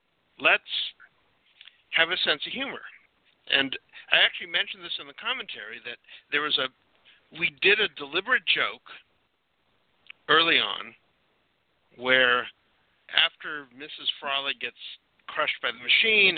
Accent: American